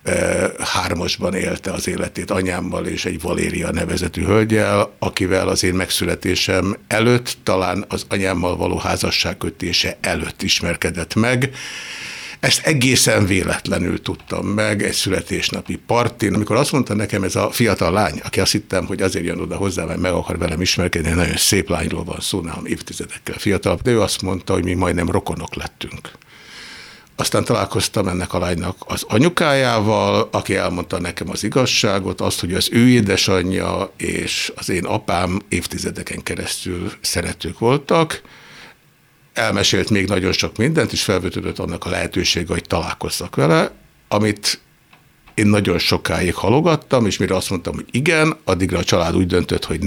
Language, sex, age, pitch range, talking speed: Hungarian, male, 60-79, 90-110 Hz, 150 wpm